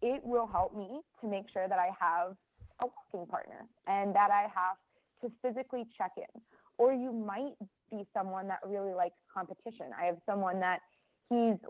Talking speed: 180 wpm